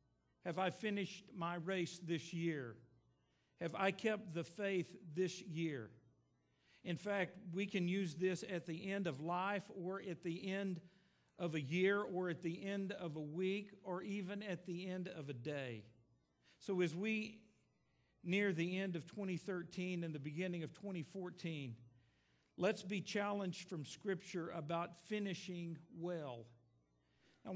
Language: English